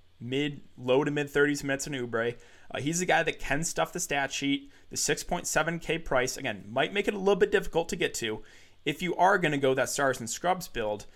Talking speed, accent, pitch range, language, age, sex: 230 wpm, American, 120-155 Hz, English, 20-39, male